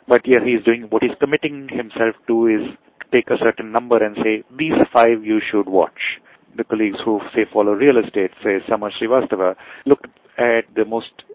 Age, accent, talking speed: 30-49, Indian, 190 wpm